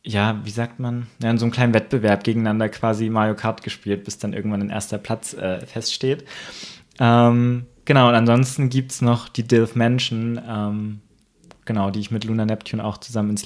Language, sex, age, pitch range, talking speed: German, male, 20-39, 100-125 Hz, 185 wpm